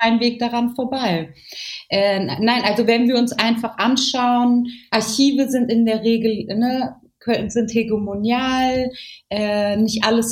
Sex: female